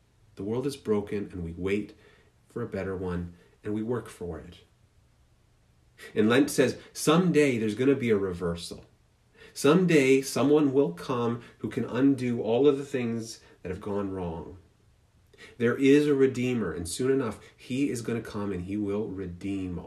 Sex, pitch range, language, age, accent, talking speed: male, 100-140 Hz, English, 40-59, American, 165 wpm